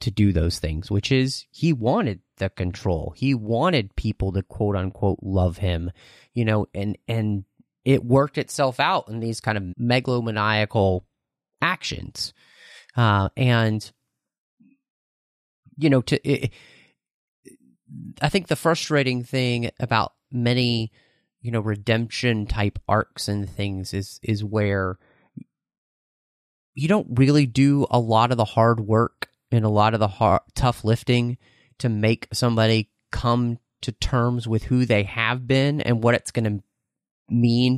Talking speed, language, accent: 140 wpm, English, American